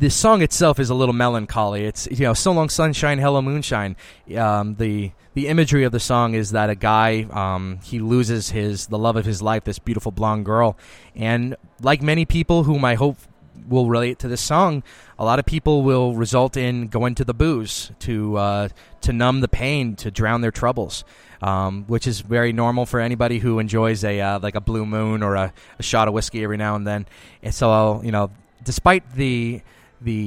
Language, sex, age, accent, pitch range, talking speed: English, male, 20-39, American, 100-120 Hz, 210 wpm